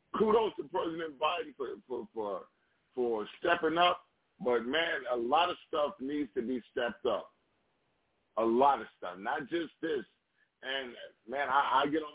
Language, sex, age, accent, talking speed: English, male, 50-69, American, 170 wpm